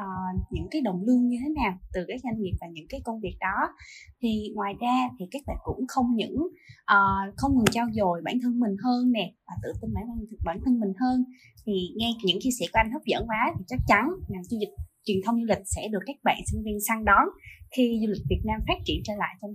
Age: 20-39